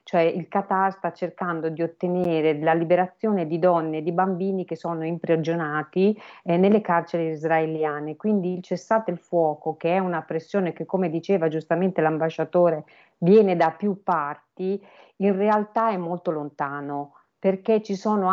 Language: Italian